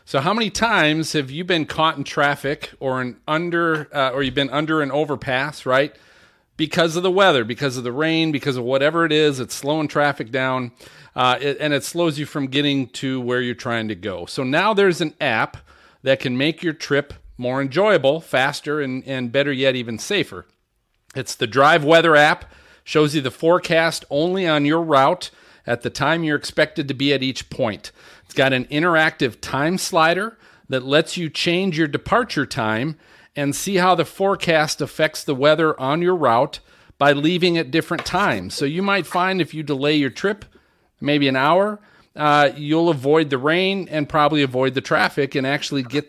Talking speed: 195 wpm